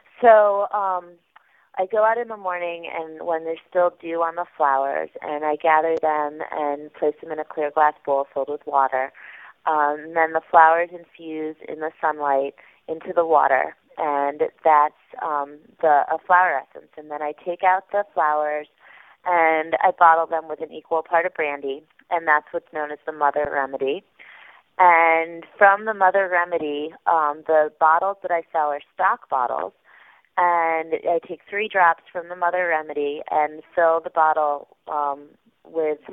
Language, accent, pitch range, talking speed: English, American, 150-175 Hz, 170 wpm